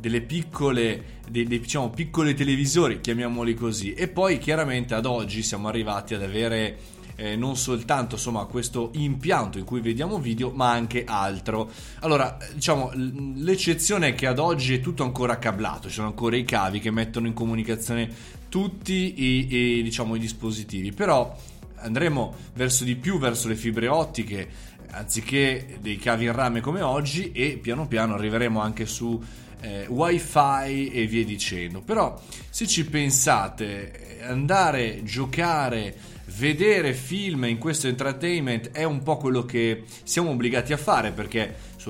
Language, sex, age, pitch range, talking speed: Italian, male, 20-39, 115-145 Hz, 155 wpm